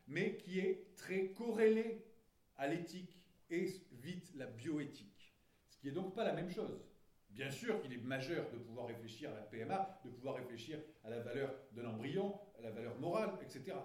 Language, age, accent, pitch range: French, 40-59, French, 120-185 Hz